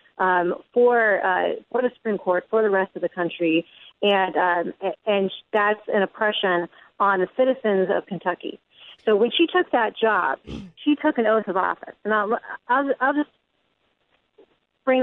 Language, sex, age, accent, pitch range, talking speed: English, female, 40-59, American, 195-240 Hz, 170 wpm